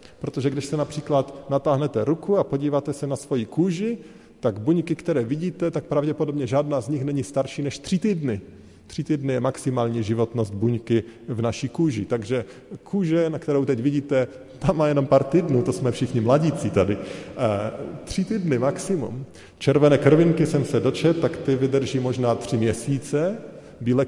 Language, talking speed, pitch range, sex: Slovak, 165 wpm, 120-155 Hz, male